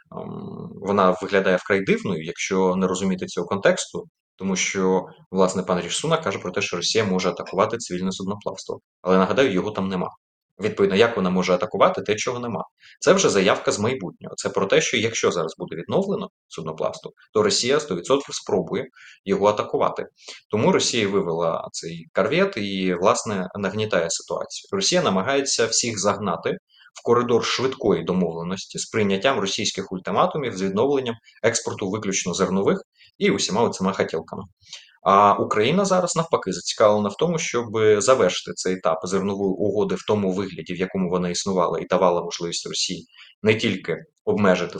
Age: 20-39